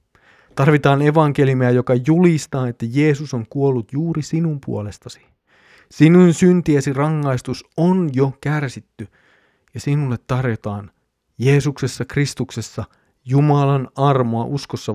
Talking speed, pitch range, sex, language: 100 wpm, 105-135 Hz, male, Finnish